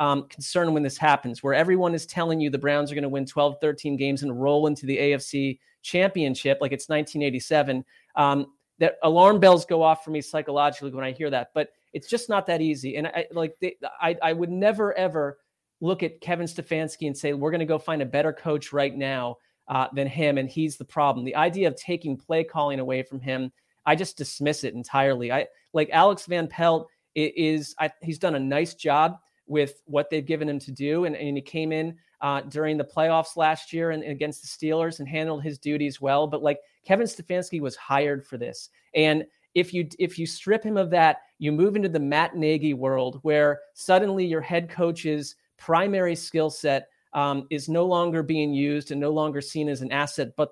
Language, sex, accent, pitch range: English, male, American, 140-165 Hz